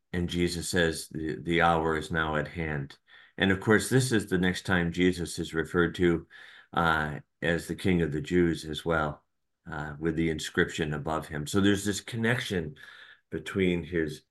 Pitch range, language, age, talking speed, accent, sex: 75-90 Hz, English, 40-59, 180 wpm, American, male